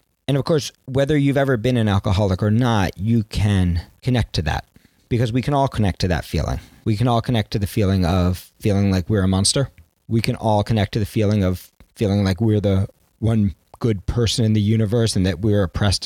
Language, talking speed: English, 220 wpm